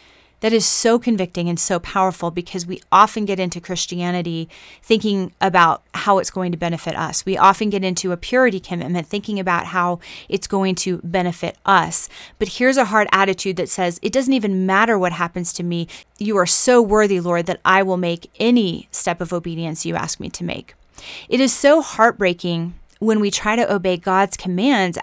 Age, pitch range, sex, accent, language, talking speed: 30-49, 175-215 Hz, female, American, English, 190 wpm